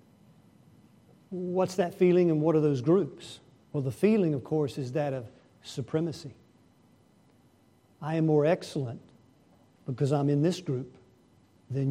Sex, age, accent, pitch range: male, 50-69, American, 135-180 Hz